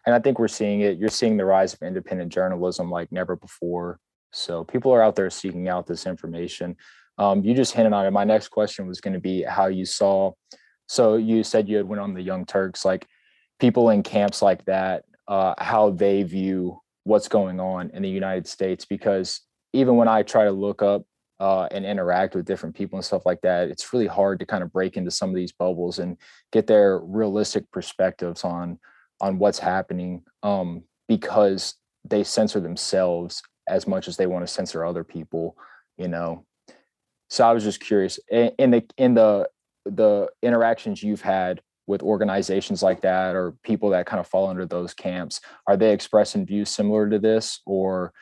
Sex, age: male, 20-39